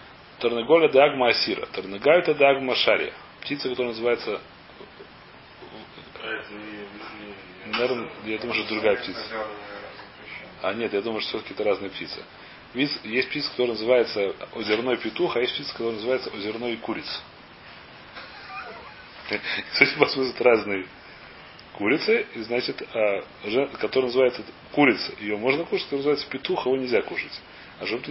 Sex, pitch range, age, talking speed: male, 105-135 Hz, 30-49, 130 wpm